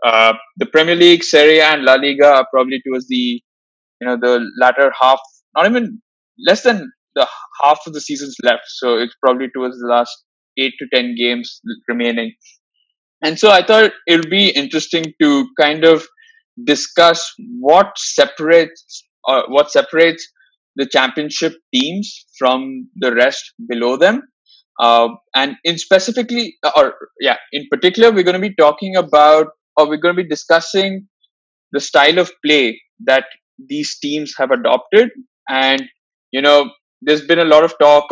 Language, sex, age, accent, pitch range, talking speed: English, male, 20-39, Indian, 130-210 Hz, 160 wpm